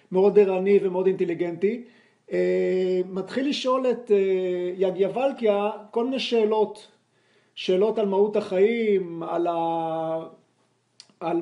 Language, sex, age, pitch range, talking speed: Hebrew, male, 40-59, 190-230 Hz, 100 wpm